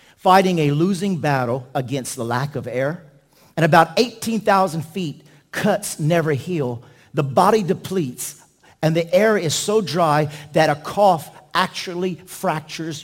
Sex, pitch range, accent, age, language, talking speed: male, 120-155 Hz, American, 50-69, English, 140 wpm